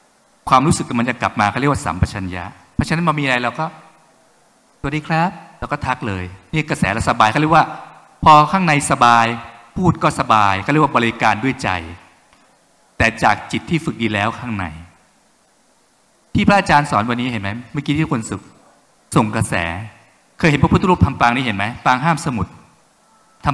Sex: male